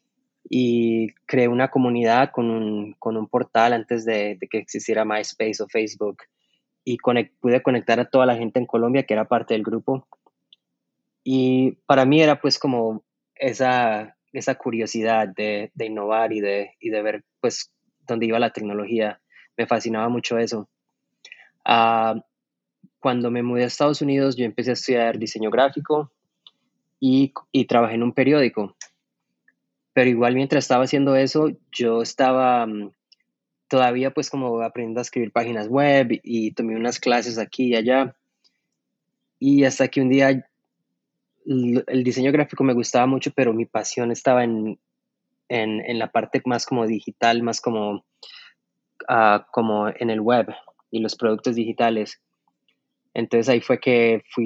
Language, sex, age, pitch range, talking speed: Spanish, male, 20-39, 115-130 Hz, 155 wpm